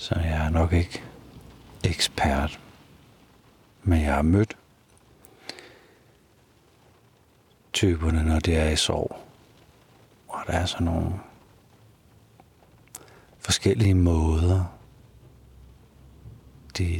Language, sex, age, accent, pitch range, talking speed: Danish, male, 60-79, native, 85-115 Hz, 85 wpm